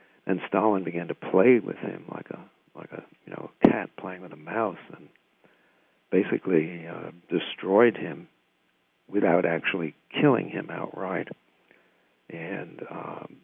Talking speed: 135 wpm